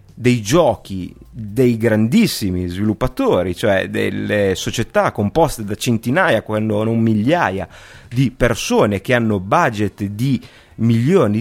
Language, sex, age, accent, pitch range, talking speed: Italian, male, 30-49, native, 100-145 Hz, 110 wpm